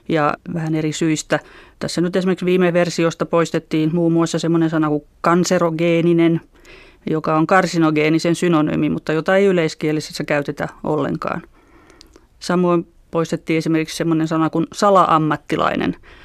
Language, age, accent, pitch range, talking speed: Finnish, 20-39, native, 155-175 Hz, 120 wpm